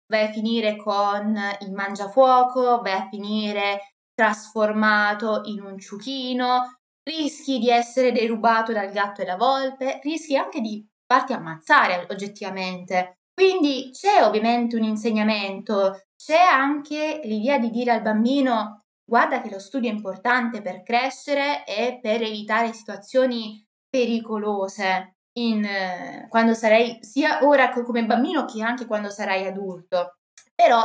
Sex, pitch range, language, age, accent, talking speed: female, 200-250 Hz, Italian, 20-39, native, 130 wpm